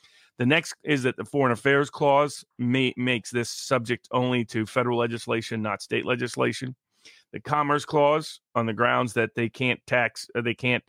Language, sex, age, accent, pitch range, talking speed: English, male, 40-59, American, 120-150 Hz, 165 wpm